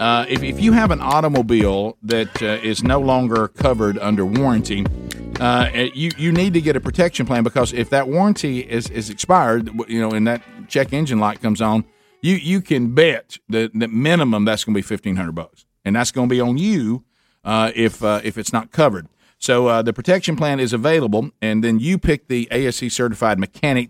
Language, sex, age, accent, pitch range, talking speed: English, male, 50-69, American, 110-140 Hz, 205 wpm